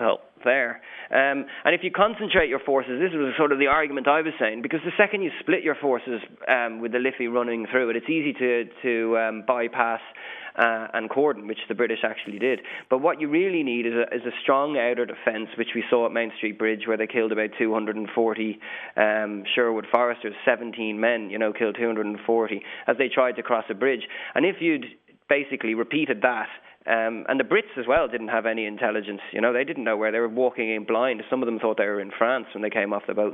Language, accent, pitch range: English, Irish, 115-145 Hz